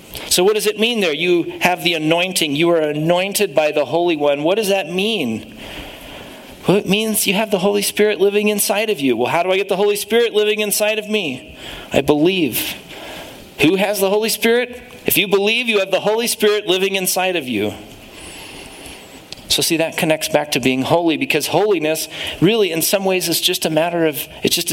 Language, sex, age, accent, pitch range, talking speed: English, male, 40-59, American, 165-210 Hz, 205 wpm